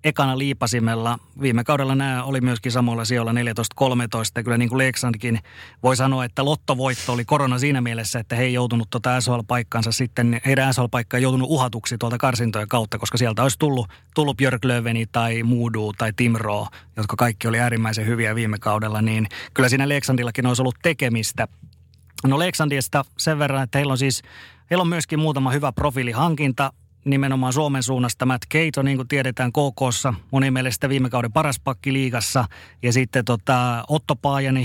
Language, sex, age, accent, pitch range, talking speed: Finnish, male, 30-49, native, 120-135 Hz, 165 wpm